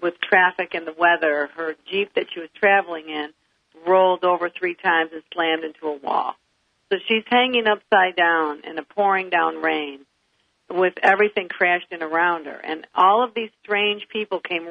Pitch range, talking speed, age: 175-220 Hz, 175 wpm, 50-69